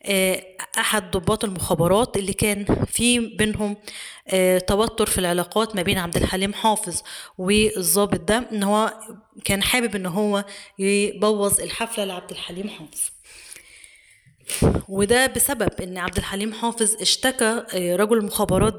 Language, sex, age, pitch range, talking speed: Arabic, female, 20-39, 190-225 Hz, 115 wpm